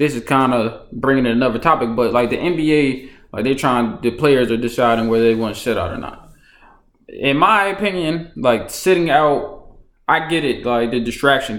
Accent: American